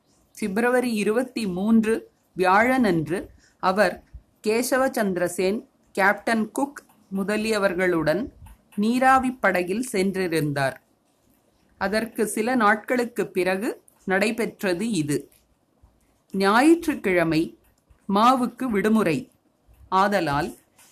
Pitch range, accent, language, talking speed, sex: 185-240 Hz, native, Tamil, 65 wpm, female